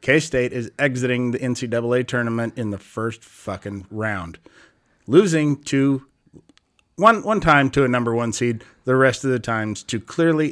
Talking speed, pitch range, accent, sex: 160 wpm, 125-170 Hz, American, male